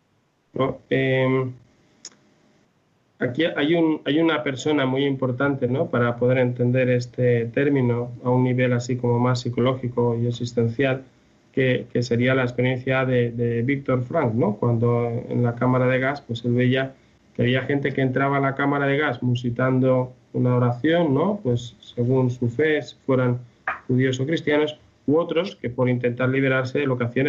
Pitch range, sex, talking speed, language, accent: 120-140 Hz, male, 165 wpm, Spanish, Spanish